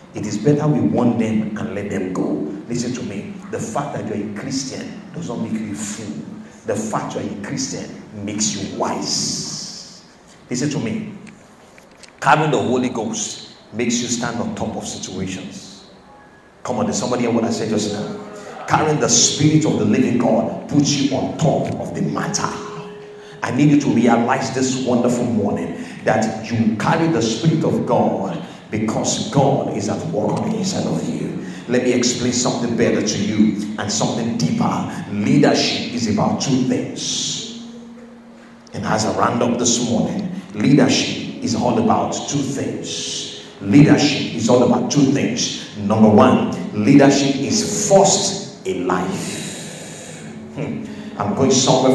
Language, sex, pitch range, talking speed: English, male, 110-150 Hz, 155 wpm